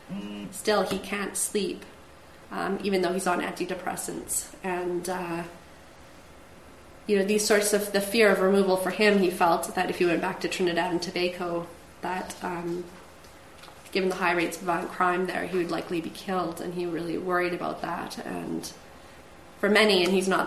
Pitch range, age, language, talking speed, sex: 170-200 Hz, 20-39, English, 180 wpm, female